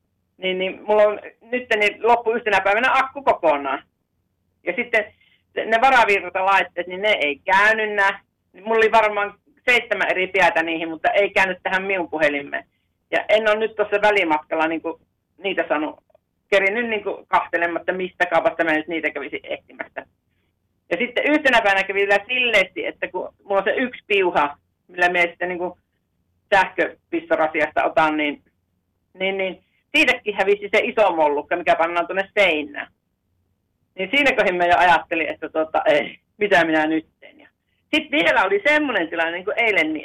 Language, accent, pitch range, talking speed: Finnish, native, 160-220 Hz, 155 wpm